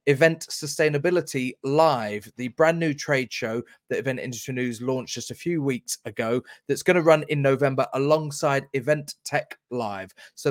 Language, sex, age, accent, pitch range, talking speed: English, male, 30-49, British, 125-155 Hz, 165 wpm